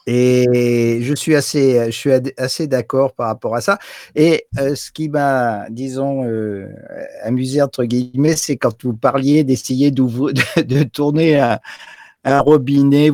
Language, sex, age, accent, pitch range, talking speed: French, male, 50-69, French, 120-145 Hz, 140 wpm